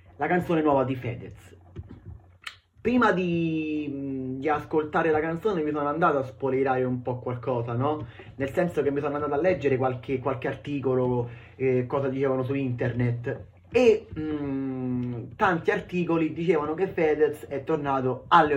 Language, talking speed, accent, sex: Italian, 150 wpm, native, male